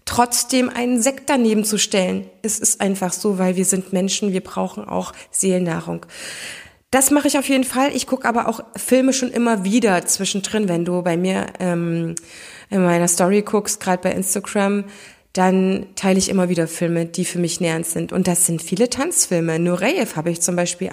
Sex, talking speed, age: female, 190 wpm, 20-39